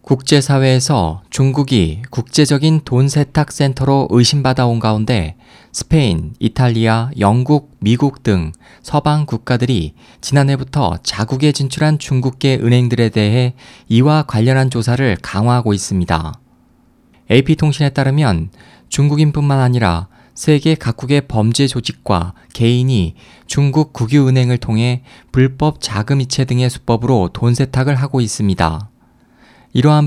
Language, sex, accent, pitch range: Korean, male, native, 115-145 Hz